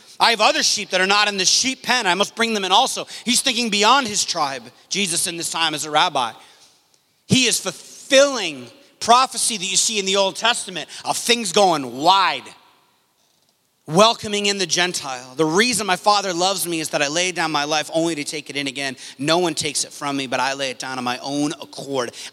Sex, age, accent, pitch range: male, 30-49, American, 150-205 Hz